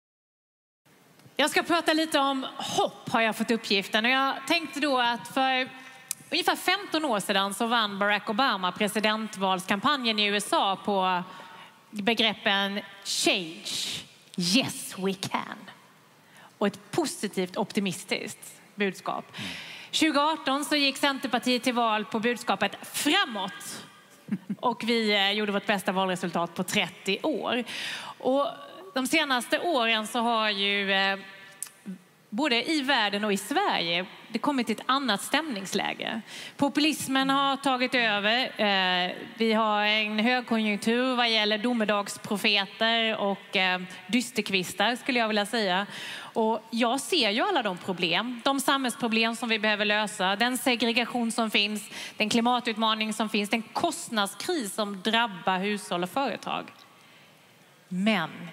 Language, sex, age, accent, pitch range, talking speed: English, female, 30-49, Swedish, 200-255 Hz, 125 wpm